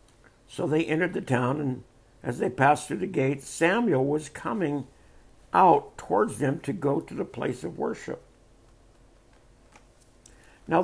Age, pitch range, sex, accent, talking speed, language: 60-79, 130-175 Hz, male, American, 145 wpm, English